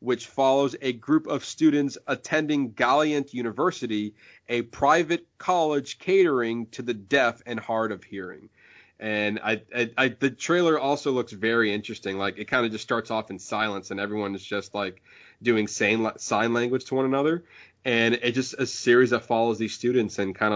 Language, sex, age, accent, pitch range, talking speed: English, male, 30-49, American, 105-140 Hz, 180 wpm